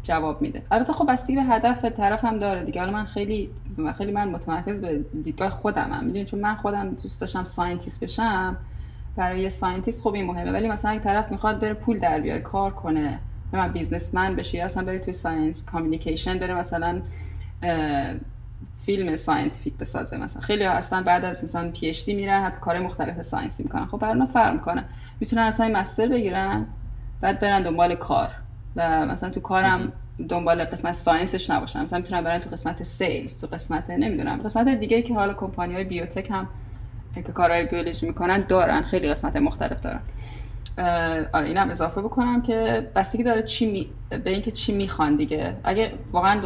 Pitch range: 160-210 Hz